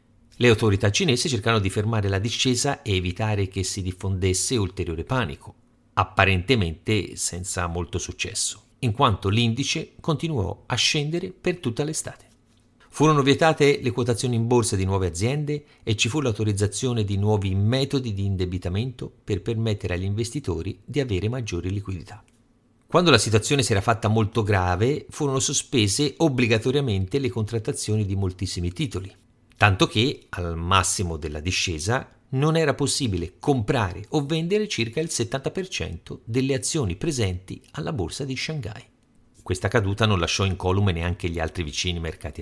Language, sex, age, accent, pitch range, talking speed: Italian, male, 50-69, native, 95-125 Hz, 145 wpm